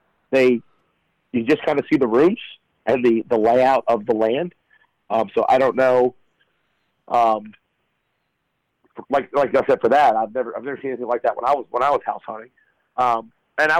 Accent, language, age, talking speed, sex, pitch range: American, English, 40-59, 200 wpm, male, 115-140 Hz